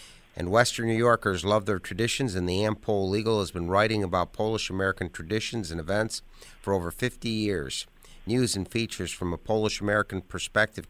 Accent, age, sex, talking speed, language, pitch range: American, 50-69, male, 165 wpm, English, 90-105 Hz